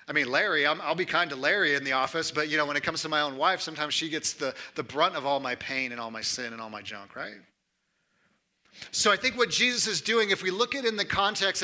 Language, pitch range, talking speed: English, 150-200 Hz, 290 wpm